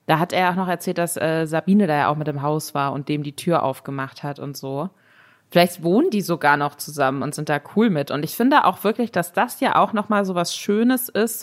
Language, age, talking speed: German, 20-39, 260 wpm